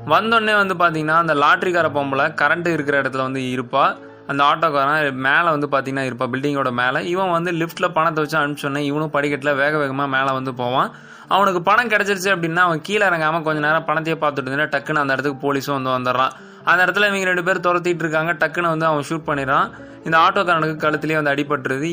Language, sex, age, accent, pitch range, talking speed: Tamil, male, 20-39, native, 140-170 Hz, 185 wpm